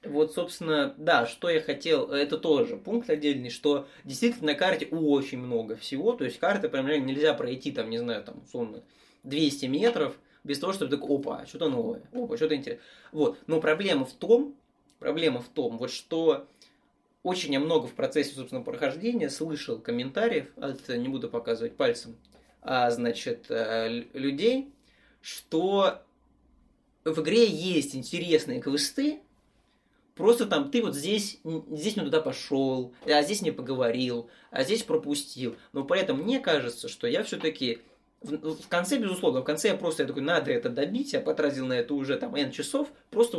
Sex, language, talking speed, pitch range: male, Russian, 160 wpm, 140-240 Hz